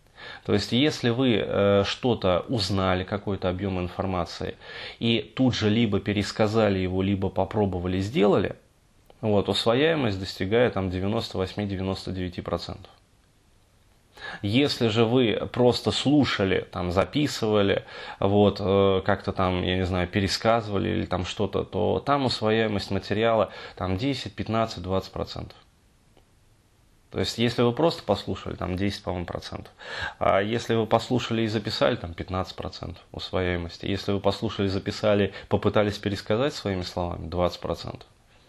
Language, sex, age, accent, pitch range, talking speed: Russian, male, 20-39, native, 95-115 Hz, 120 wpm